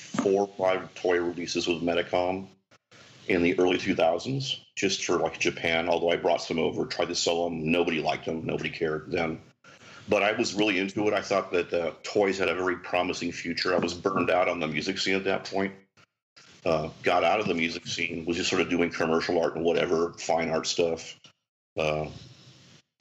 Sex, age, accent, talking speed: male, 40-59, American, 200 wpm